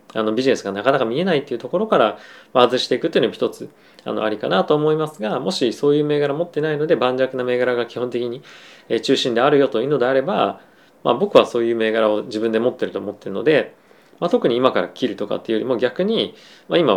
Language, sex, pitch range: Japanese, male, 110-150 Hz